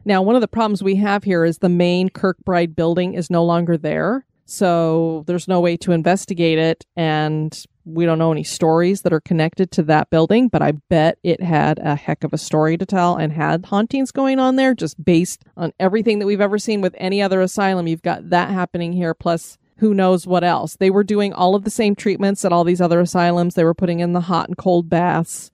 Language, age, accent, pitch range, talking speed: English, 30-49, American, 165-205 Hz, 230 wpm